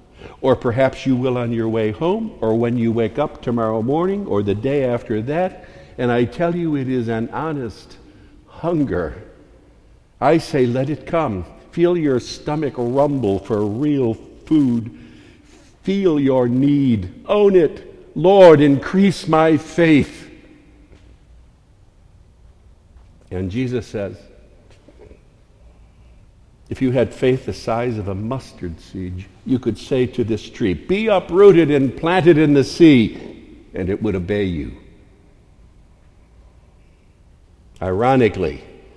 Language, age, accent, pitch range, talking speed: English, 60-79, American, 105-145 Hz, 125 wpm